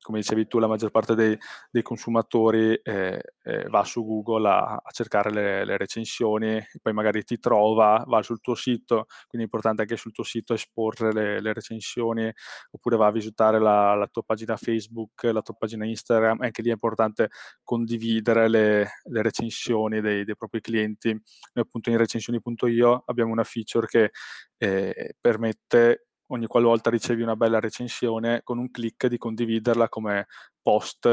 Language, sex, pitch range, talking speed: Italian, male, 110-115 Hz, 170 wpm